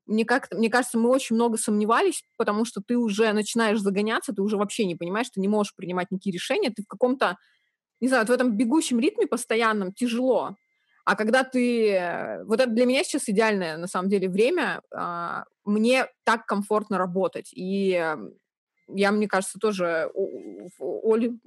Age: 20-39